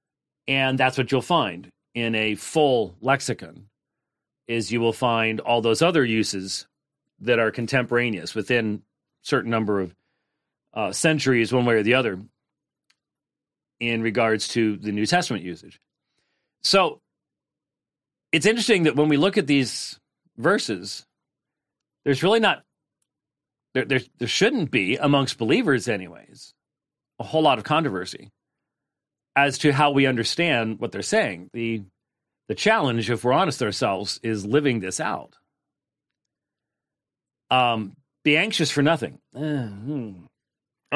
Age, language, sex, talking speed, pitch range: 40-59, English, male, 130 wpm, 115-150 Hz